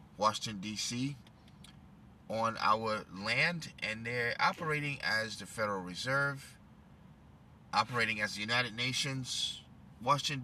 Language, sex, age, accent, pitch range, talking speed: English, male, 30-49, American, 110-145 Hz, 105 wpm